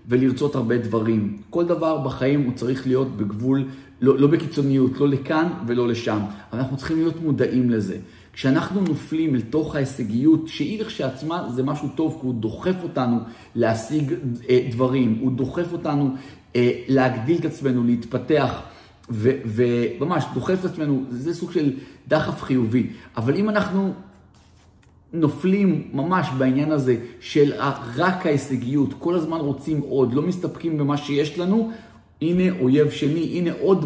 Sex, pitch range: male, 125-165 Hz